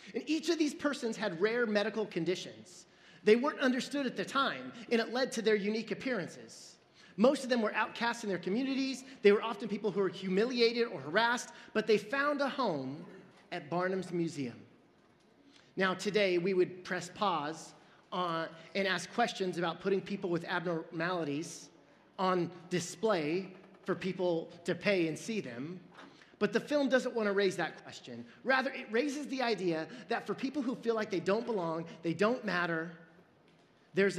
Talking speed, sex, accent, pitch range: 170 wpm, male, American, 175-230 Hz